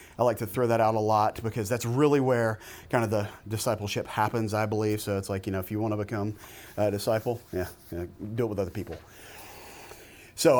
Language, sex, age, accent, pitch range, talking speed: English, male, 30-49, American, 105-130 Hz, 215 wpm